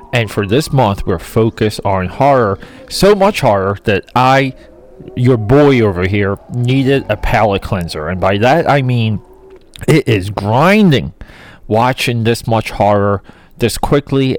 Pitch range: 100-130 Hz